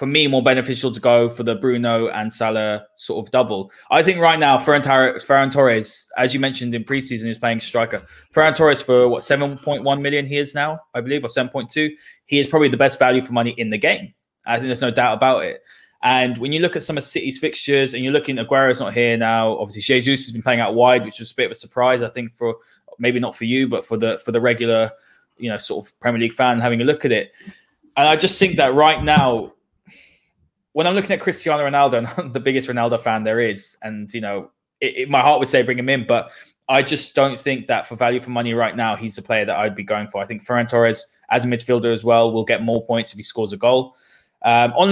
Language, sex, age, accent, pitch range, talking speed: English, male, 20-39, British, 115-145 Hz, 250 wpm